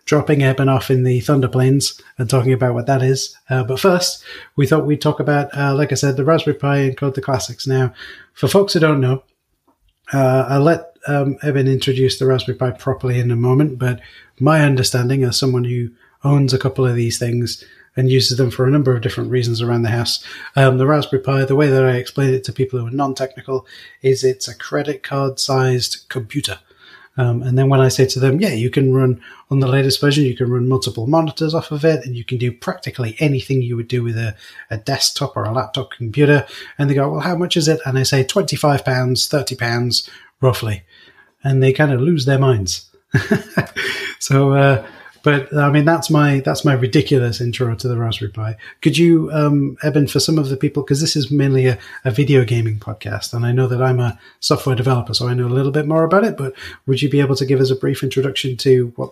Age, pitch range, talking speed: 30-49, 125-145 Hz, 225 wpm